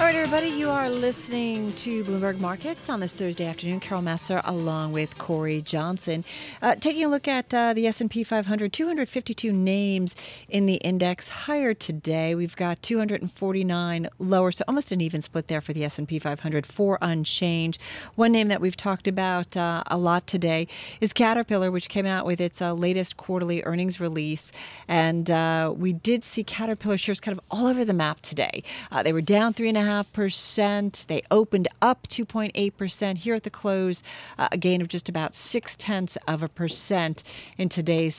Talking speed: 180 wpm